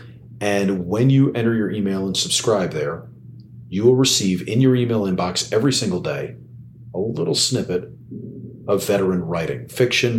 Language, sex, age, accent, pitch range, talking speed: English, male, 40-59, American, 90-120 Hz, 145 wpm